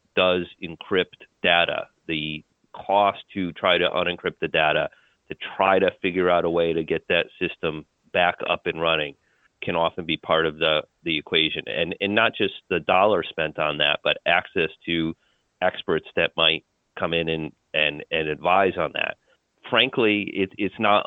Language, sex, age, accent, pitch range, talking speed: English, male, 30-49, American, 85-95 Hz, 175 wpm